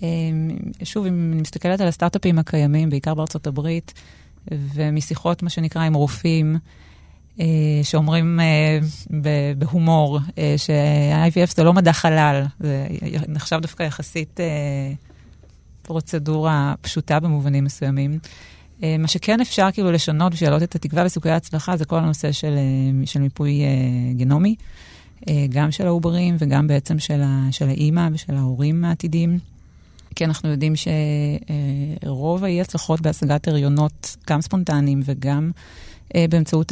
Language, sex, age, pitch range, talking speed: Hebrew, female, 30-49, 140-165 Hz, 120 wpm